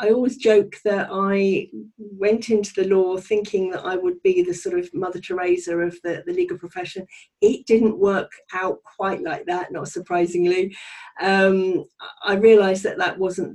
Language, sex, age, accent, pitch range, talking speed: English, female, 40-59, British, 180-205 Hz, 175 wpm